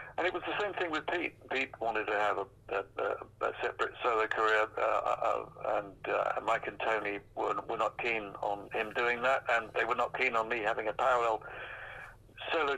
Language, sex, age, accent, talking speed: English, male, 60-79, British, 205 wpm